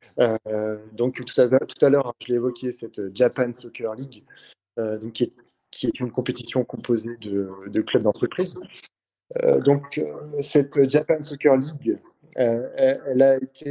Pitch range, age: 115-145 Hz, 20-39